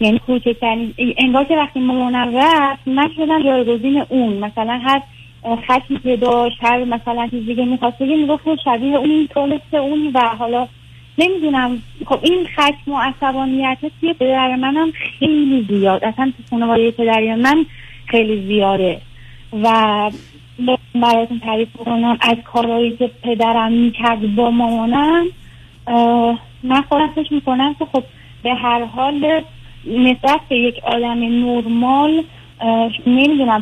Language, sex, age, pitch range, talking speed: Persian, female, 30-49, 220-270 Hz, 115 wpm